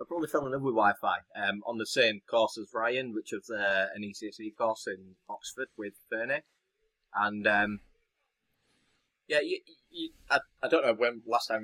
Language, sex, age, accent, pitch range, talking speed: English, male, 20-39, British, 95-125 Hz, 185 wpm